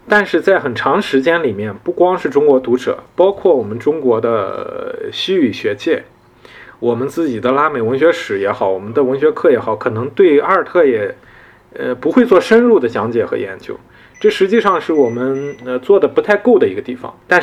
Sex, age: male, 20-39